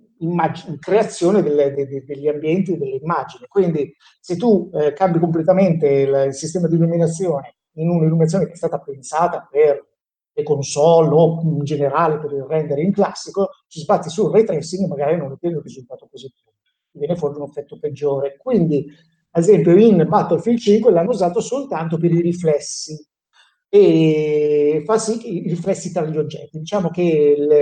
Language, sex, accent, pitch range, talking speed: Italian, male, native, 145-190 Hz, 170 wpm